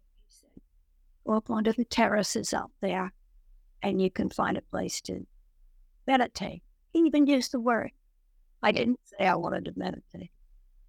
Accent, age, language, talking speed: American, 50-69, English, 145 wpm